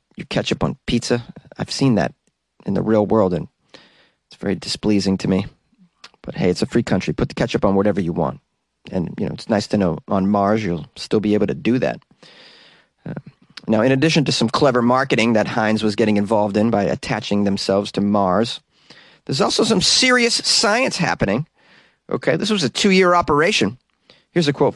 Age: 30-49